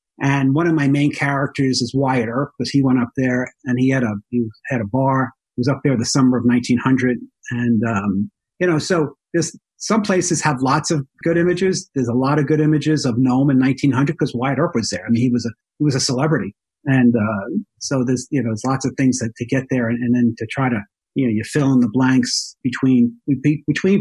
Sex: male